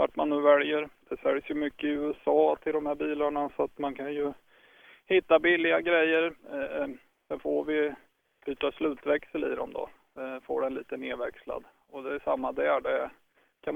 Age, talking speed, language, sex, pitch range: 20-39, 190 wpm, Swedish, male, 130-160 Hz